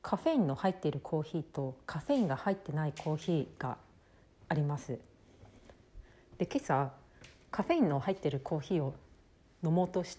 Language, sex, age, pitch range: Japanese, female, 40-59, 140-210 Hz